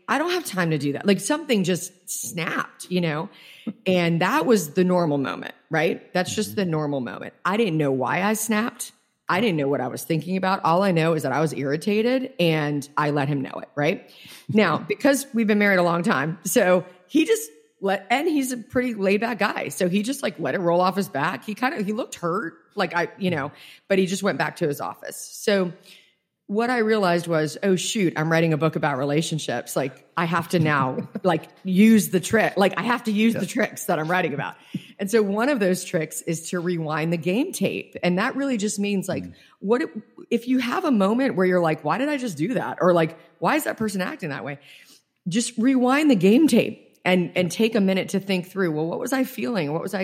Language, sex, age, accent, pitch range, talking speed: English, female, 30-49, American, 165-225 Hz, 235 wpm